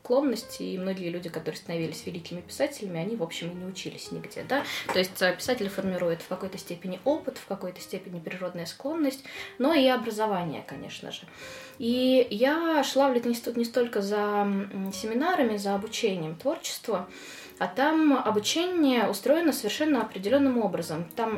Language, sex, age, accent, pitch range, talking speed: Russian, female, 20-39, native, 185-255 Hz, 150 wpm